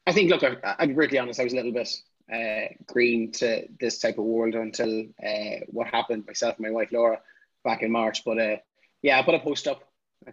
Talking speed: 240 wpm